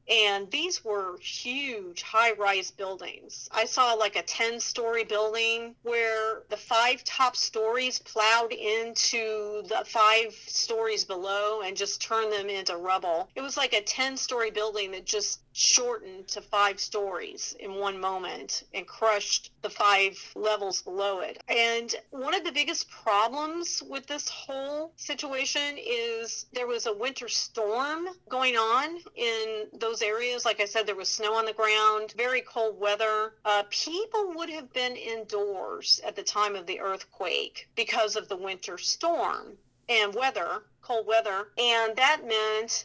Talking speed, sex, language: 150 wpm, female, English